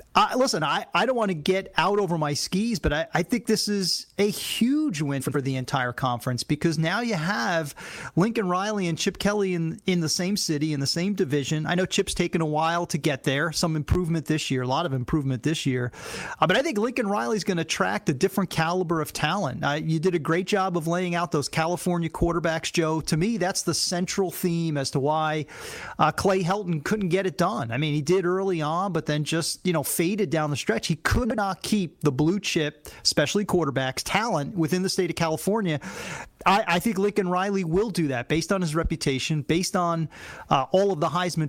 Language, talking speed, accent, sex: English, 220 wpm, American, male